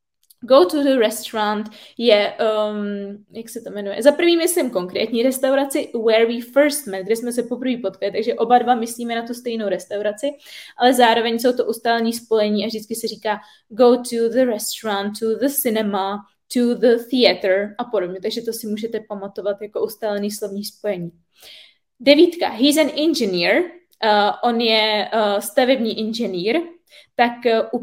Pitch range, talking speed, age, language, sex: 210-250 Hz, 160 wpm, 20-39, Czech, female